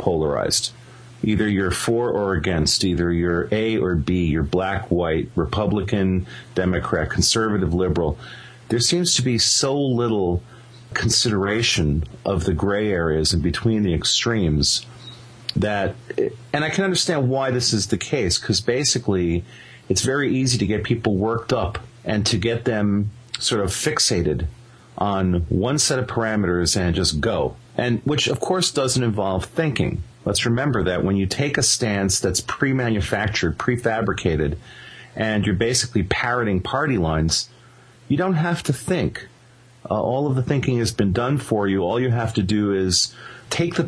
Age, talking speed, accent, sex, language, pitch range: 40-59, 155 wpm, American, male, English, 95-125 Hz